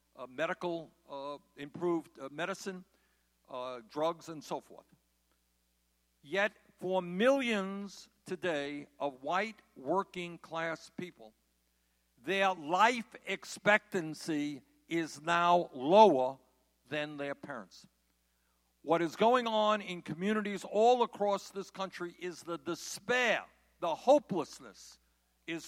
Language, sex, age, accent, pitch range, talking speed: English, male, 60-79, American, 135-195 Hz, 105 wpm